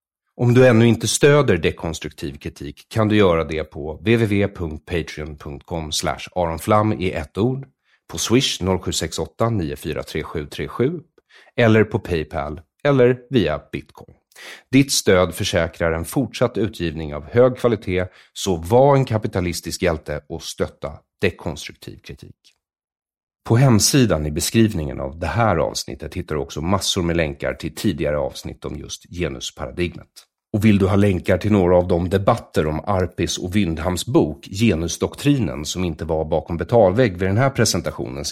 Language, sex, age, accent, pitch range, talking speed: English, male, 30-49, Swedish, 80-115 Hz, 140 wpm